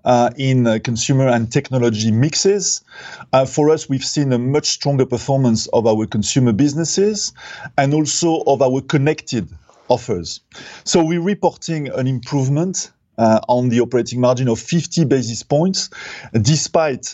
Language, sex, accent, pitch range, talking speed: English, male, French, 120-150 Hz, 145 wpm